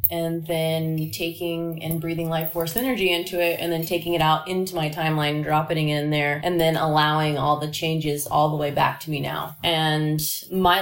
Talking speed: 205 wpm